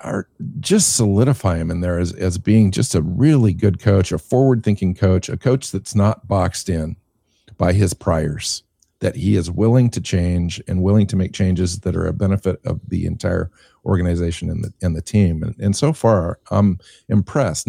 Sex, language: male, English